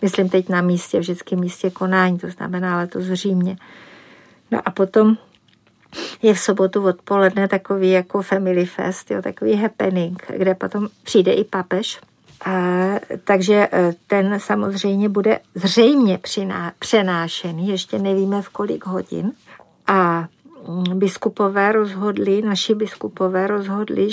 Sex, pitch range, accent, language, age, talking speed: female, 190-205 Hz, native, Czech, 50-69, 115 wpm